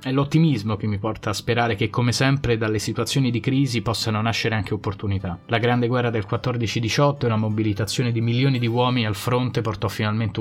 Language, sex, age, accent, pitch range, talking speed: Italian, male, 30-49, native, 100-120 Hz, 195 wpm